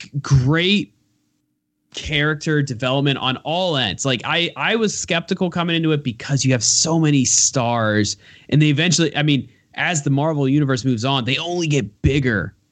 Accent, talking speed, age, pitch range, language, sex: American, 165 wpm, 20-39, 115-145 Hz, English, male